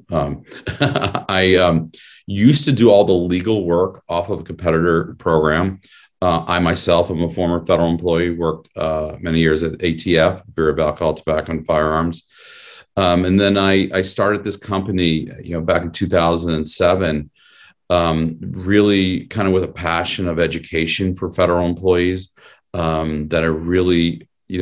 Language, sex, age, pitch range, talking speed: English, male, 40-59, 80-90 Hz, 160 wpm